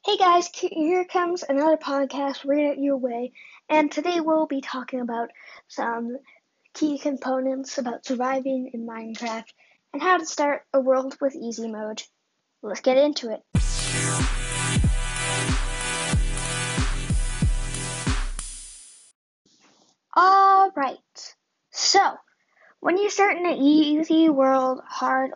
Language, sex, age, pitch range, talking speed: English, female, 20-39, 245-310 Hz, 110 wpm